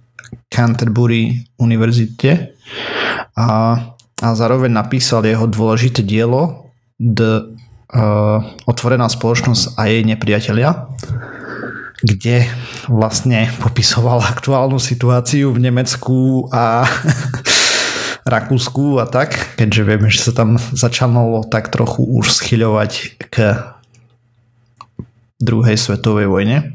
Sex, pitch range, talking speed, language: male, 115-125 Hz, 90 wpm, Slovak